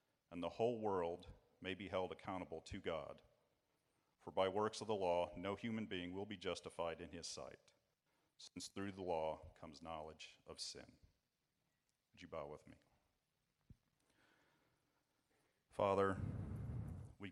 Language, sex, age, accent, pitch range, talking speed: English, male, 40-59, American, 80-90 Hz, 140 wpm